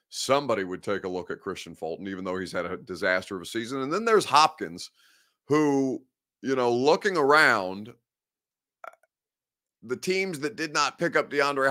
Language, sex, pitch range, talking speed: English, male, 110-140 Hz, 175 wpm